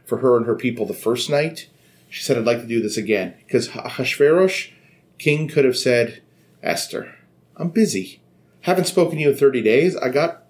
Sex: male